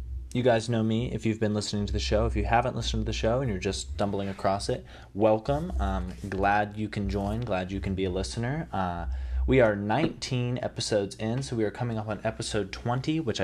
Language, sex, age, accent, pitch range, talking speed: English, male, 20-39, American, 95-115 Hz, 230 wpm